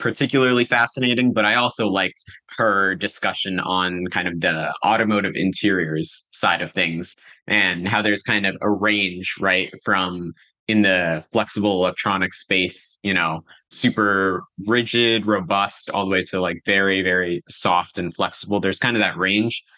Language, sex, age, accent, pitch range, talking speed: English, male, 20-39, American, 95-110 Hz, 155 wpm